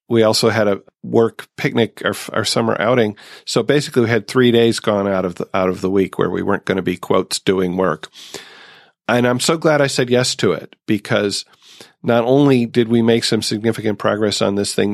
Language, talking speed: English, 210 wpm